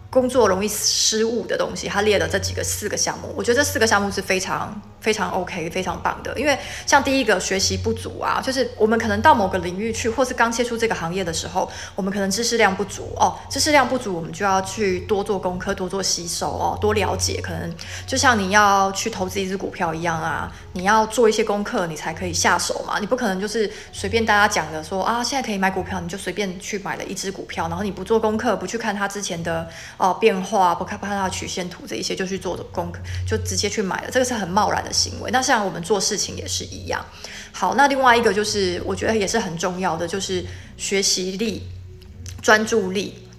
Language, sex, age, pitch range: Chinese, female, 20-39, 180-220 Hz